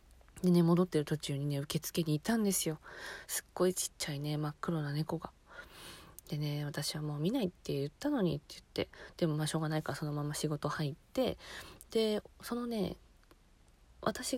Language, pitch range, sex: Japanese, 145-185 Hz, female